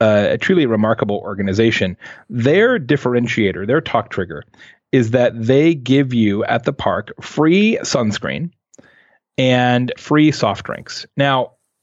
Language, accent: English, American